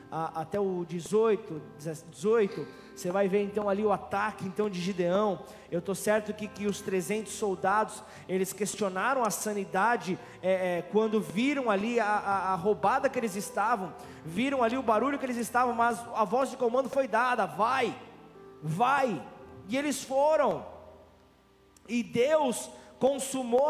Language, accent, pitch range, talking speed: Portuguese, Brazilian, 190-240 Hz, 145 wpm